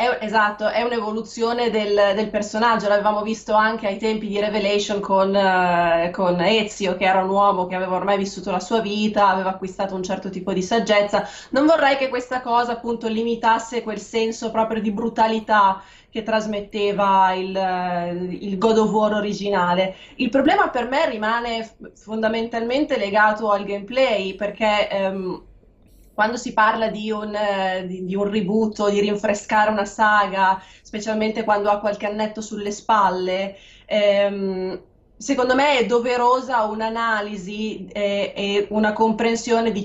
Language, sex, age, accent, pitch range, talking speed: Italian, female, 20-39, native, 200-230 Hz, 140 wpm